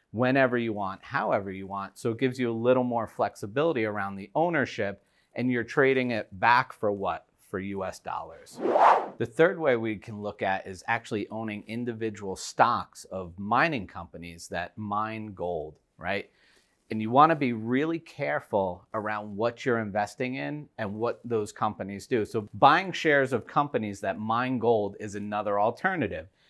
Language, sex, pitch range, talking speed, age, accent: English, male, 105-125 Hz, 165 wpm, 40-59, American